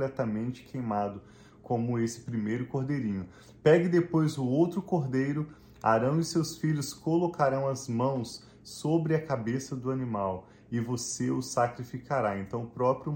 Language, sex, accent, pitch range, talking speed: Portuguese, male, Brazilian, 115-145 Hz, 135 wpm